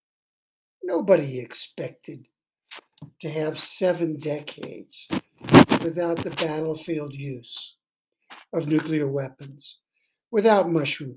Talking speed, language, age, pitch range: 80 wpm, English, 60-79, 155-200 Hz